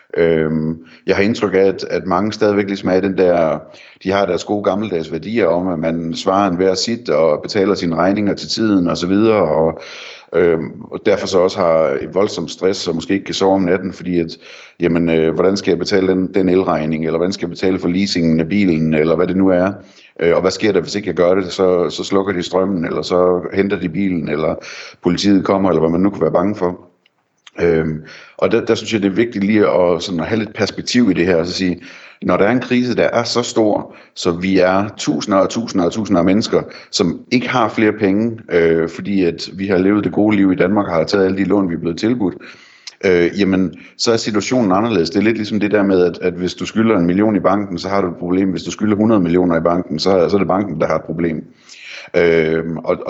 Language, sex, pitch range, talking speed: Danish, male, 85-105 Hz, 240 wpm